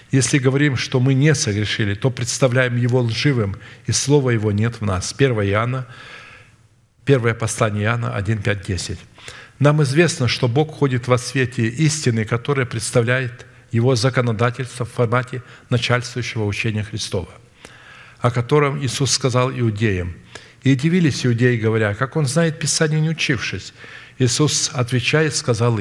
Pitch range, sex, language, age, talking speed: 115-135 Hz, male, Russian, 50-69, 135 wpm